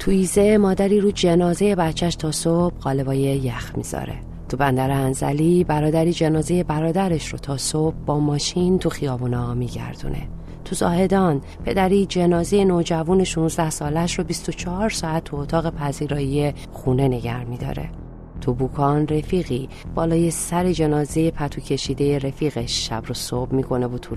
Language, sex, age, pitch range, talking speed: Persian, female, 30-49, 125-170 Hz, 140 wpm